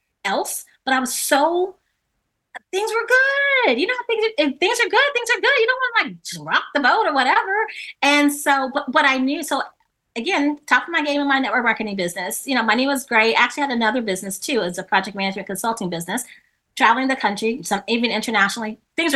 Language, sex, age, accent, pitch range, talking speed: English, female, 30-49, American, 195-285 Hz, 215 wpm